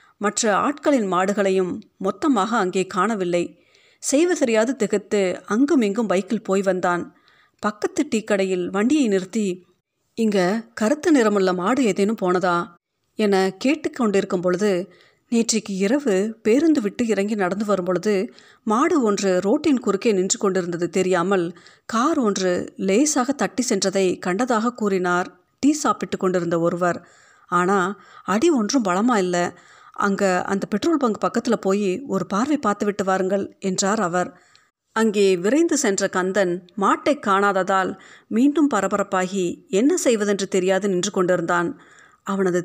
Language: Tamil